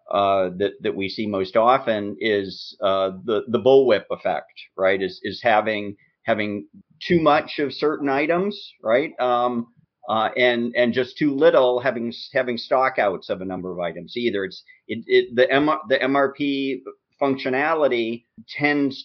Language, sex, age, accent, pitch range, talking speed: English, male, 50-69, American, 110-145 Hz, 160 wpm